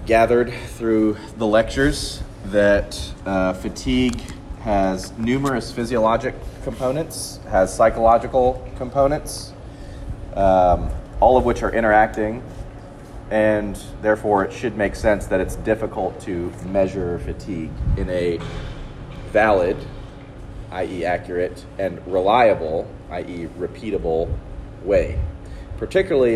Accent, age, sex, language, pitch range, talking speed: American, 30-49, male, English, 95-115 Hz, 100 wpm